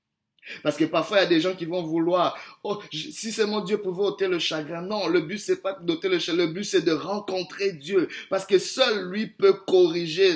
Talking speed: 230 wpm